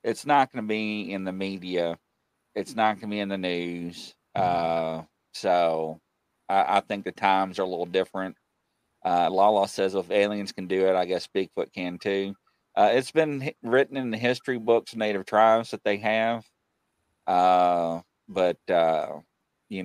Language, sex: English, male